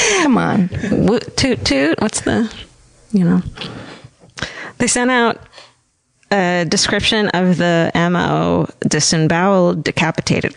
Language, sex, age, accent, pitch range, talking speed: English, female, 30-49, American, 165-200 Hz, 100 wpm